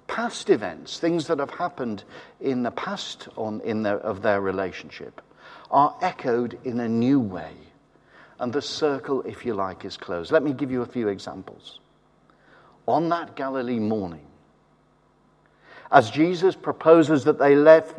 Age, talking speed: 50-69, 145 wpm